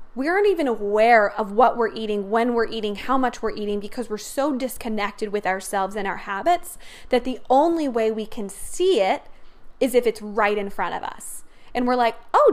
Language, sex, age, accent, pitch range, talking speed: English, female, 20-39, American, 220-290 Hz, 210 wpm